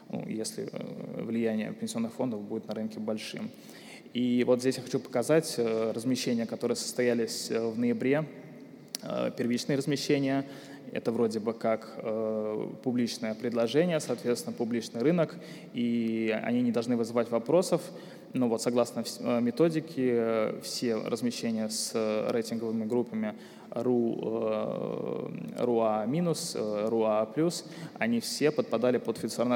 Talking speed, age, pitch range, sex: 110 wpm, 20-39, 115-140 Hz, male